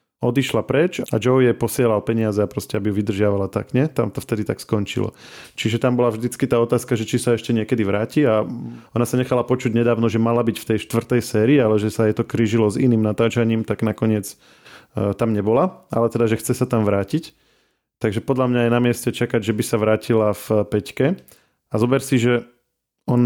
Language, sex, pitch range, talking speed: Slovak, male, 110-125 Hz, 215 wpm